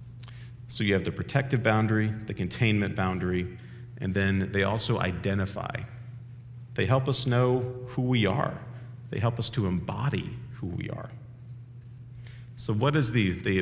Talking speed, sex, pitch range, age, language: 150 wpm, male, 105-125 Hz, 40-59, English